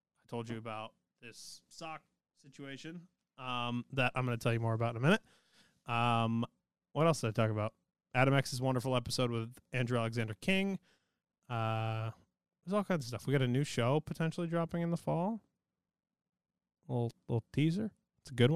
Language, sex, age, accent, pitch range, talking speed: English, male, 20-39, American, 115-155 Hz, 180 wpm